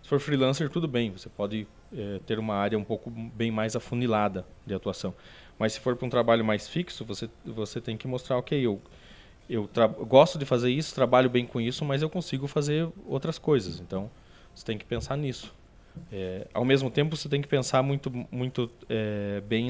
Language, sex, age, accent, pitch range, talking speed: Portuguese, male, 20-39, Brazilian, 105-130 Hz, 205 wpm